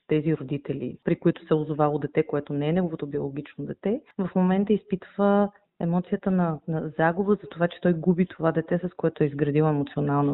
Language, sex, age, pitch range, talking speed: Bulgarian, female, 30-49, 155-195 Hz, 190 wpm